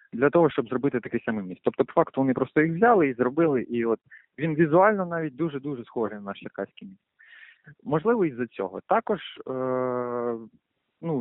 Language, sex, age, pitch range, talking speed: Ukrainian, male, 20-39, 120-155 Hz, 175 wpm